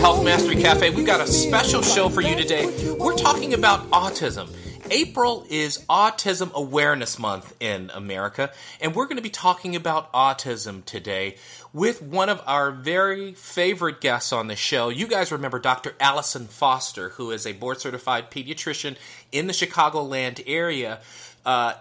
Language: English